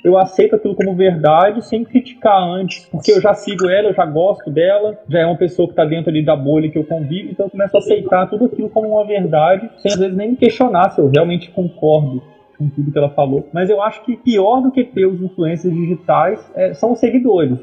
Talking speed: 240 wpm